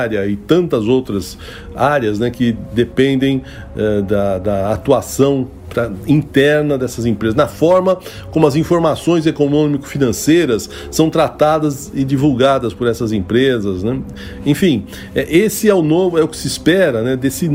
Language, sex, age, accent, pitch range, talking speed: English, male, 60-79, Brazilian, 110-160 Hz, 140 wpm